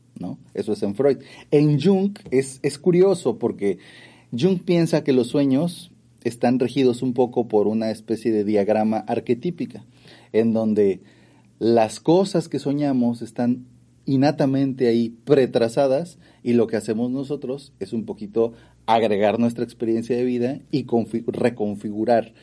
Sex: male